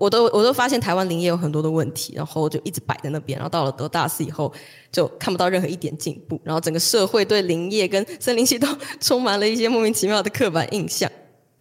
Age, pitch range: 20-39, 160-215 Hz